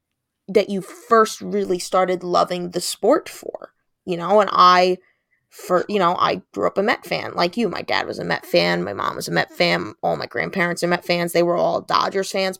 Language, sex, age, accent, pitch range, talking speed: English, female, 20-39, American, 175-210 Hz, 225 wpm